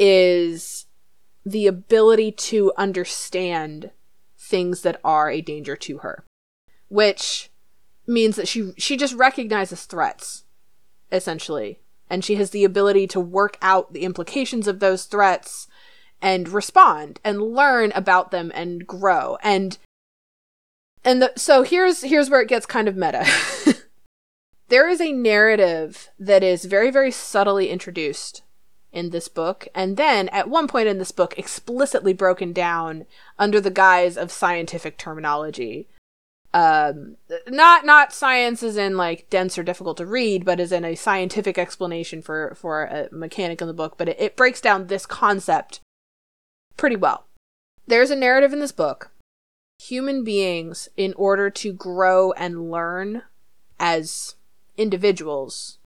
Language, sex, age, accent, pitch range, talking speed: English, female, 20-39, American, 175-230 Hz, 145 wpm